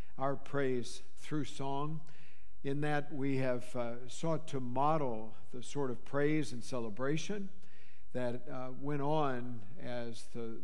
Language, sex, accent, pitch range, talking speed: English, male, American, 110-150 Hz, 135 wpm